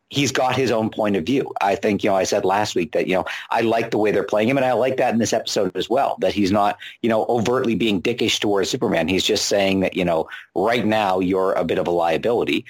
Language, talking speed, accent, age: English, 275 wpm, American, 50-69